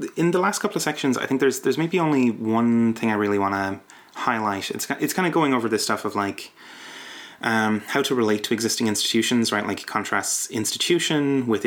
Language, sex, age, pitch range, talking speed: English, male, 30-49, 105-135 Hz, 215 wpm